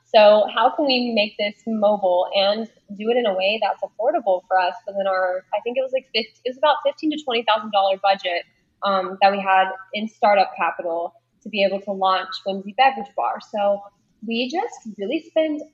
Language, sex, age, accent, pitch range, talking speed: English, female, 10-29, American, 195-230 Hz, 210 wpm